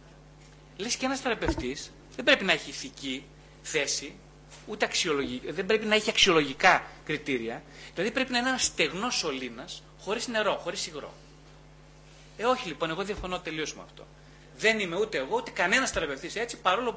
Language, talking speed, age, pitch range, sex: Greek, 165 wpm, 30-49, 165-235 Hz, male